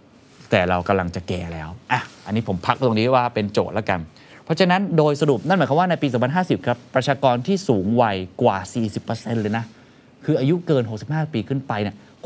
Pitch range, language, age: 105-140 Hz, Thai, 20-39